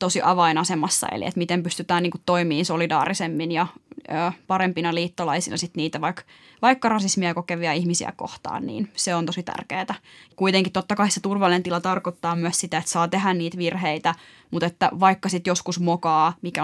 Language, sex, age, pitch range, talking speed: Finnish, female, 20-39, 170-190 Hz, 170 wpm